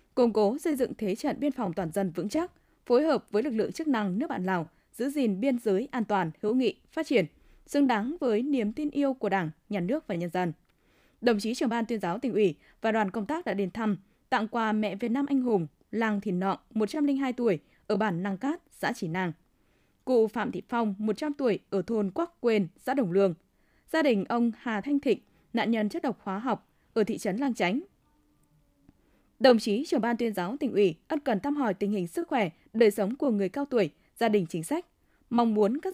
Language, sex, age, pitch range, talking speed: Vietnamese, female, 20-39, 200-270 Hz, 230 wpm